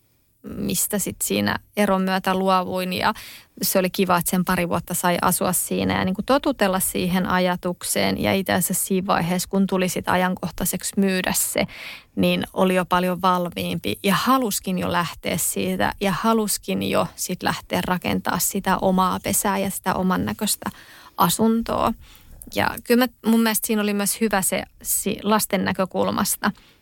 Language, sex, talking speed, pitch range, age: Finnish, female, 150 wpm, 180-215 Hz, 20-39